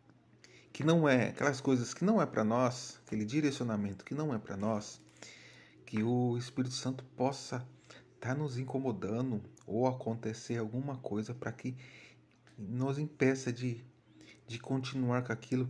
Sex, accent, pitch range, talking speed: male, Brazilian, 100-135 Hz, 150 wpm